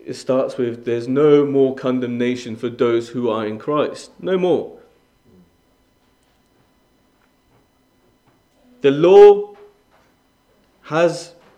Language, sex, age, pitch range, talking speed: English, male, 30-49, 135-200 Hz, 95 wpm